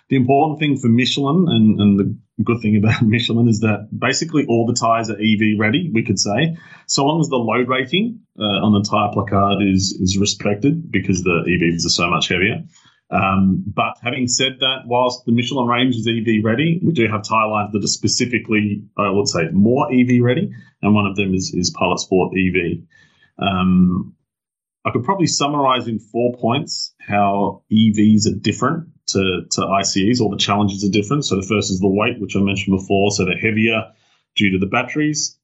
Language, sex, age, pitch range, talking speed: English, male, 30-49, 100-120 Hz, 200 wpm